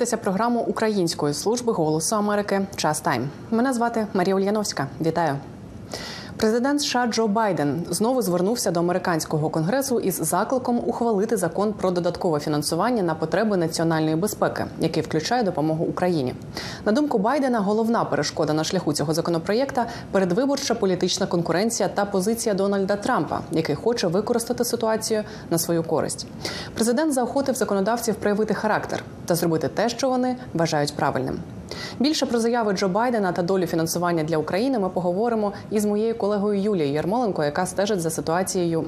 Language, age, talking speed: Ukrainian, 20-39, 140 wpm